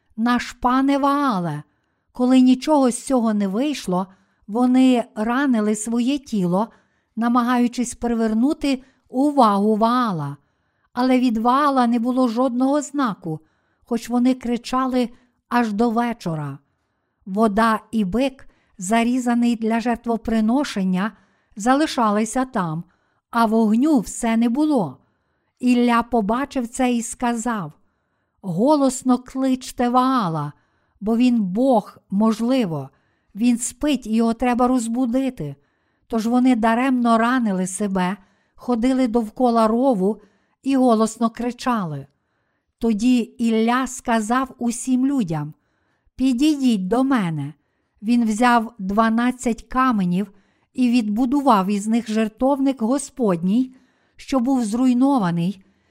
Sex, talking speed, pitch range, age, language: female, 100 wpm, 215-255 Hz, 50-69, Ukrainian